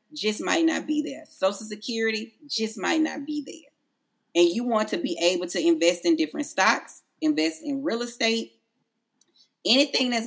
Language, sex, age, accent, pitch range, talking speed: English, female, 30-49, American, 190-310 Hz, 170 wpm